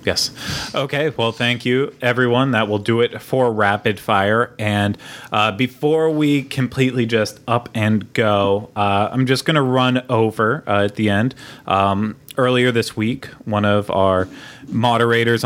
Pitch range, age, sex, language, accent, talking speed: 100-130 Hz, 20-39, male, English, American, 160 wpm